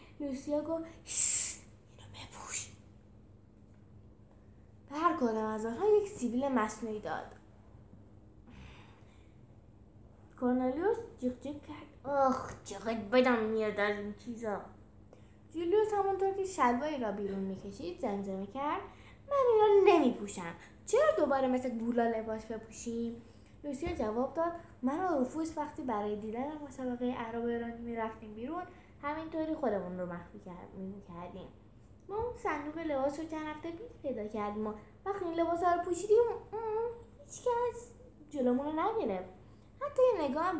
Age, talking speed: 10-29, 120 wpm